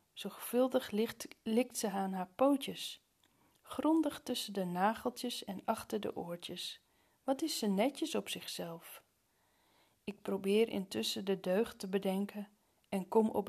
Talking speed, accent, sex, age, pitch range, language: 135 wpm, Dutch, female, 40-59, 185-235 Hz, Dutch